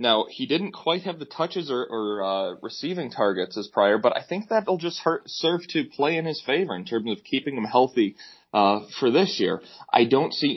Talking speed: 220 wpm